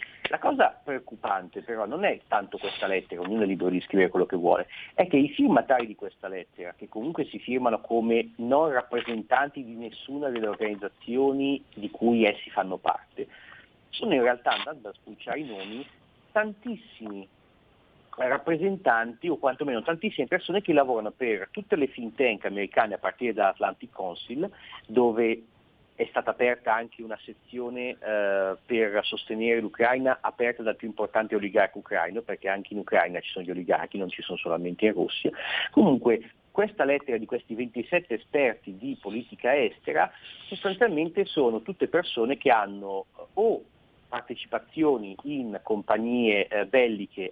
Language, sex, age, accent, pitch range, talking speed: Italian, male, 50-69, native, 110-140 Hz, 155 wpm